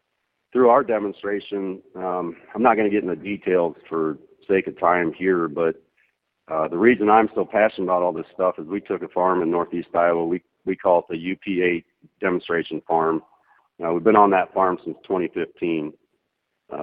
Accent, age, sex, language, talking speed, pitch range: American, 50-69, male, English, 185 wpm, 85-105 Hz